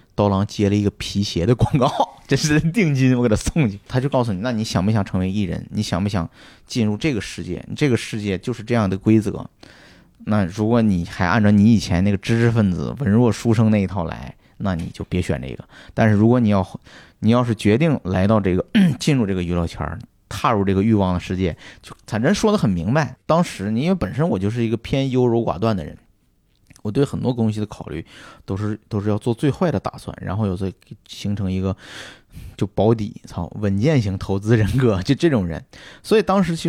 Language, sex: Chinese, male